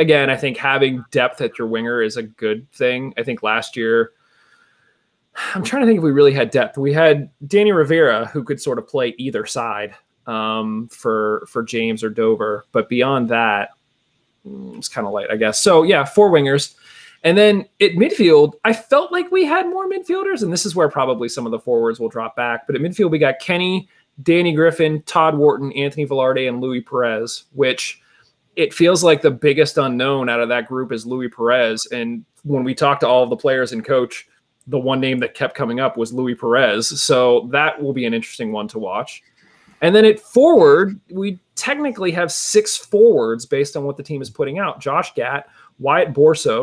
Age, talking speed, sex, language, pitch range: 20-39, 205 wpm, male, English, 120-200 Hz